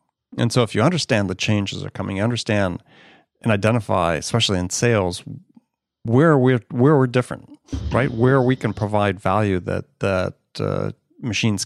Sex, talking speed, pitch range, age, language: male, 165 wpm, 100-130 Hz, 40-59, English